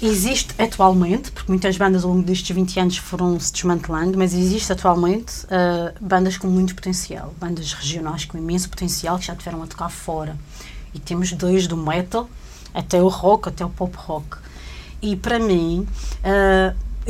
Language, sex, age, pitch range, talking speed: Portuguese, female, 30-49, 175-210 Hz, 165 wpm